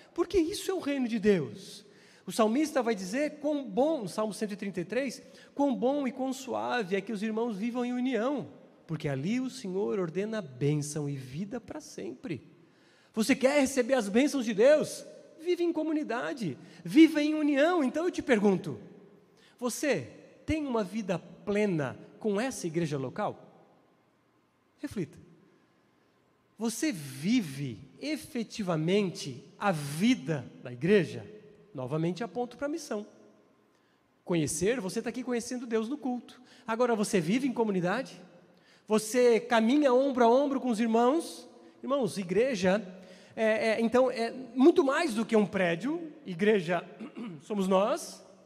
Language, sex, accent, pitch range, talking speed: Portuguese, male, Brazilian, 200-280 Hz, 140 wpm